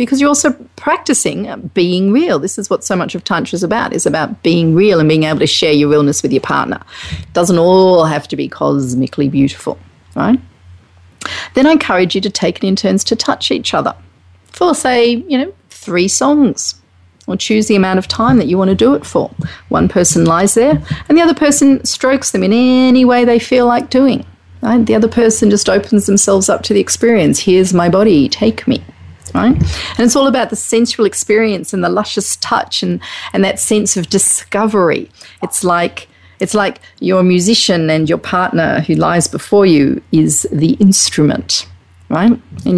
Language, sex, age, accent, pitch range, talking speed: English, female, 40-59, Australian, 165-235 Hz, 195 wpm